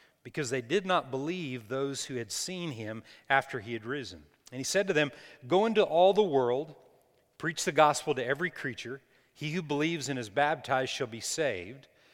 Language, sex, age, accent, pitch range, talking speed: English, male, 40-59, American, 130-165 Hz, 195 wpm